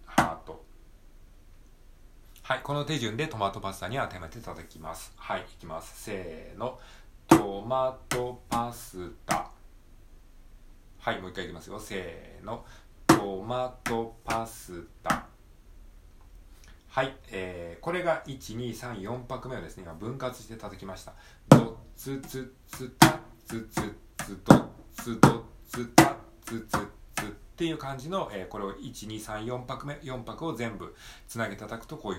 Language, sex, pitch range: Japanese, male, 90-120 Hz